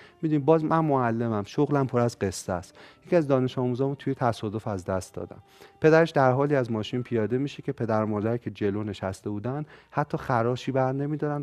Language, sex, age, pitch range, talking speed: Persian, male, 30-49, 115-150 Hz, 195 wpm